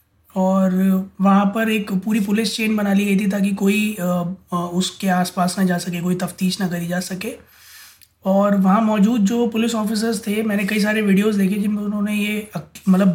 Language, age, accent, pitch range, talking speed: Hindi, 20-39, native, 190-220 Hz, 190 wpm